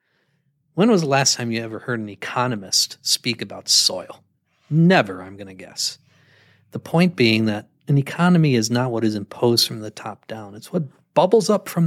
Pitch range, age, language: 105-145 Hz, 60-79, English